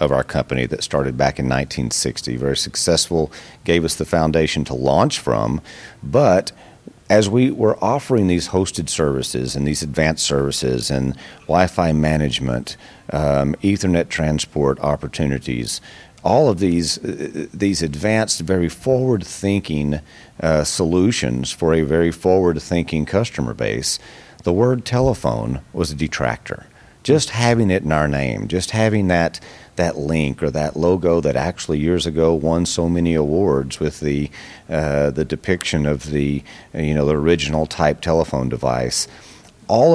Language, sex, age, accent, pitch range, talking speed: English, male, 40-59, American, 70-90 Hz, 145 wpm